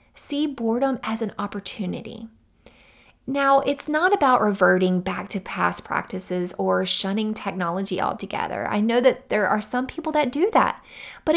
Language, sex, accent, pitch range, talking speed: English, female, American, 205-270 Hz, 155 wpm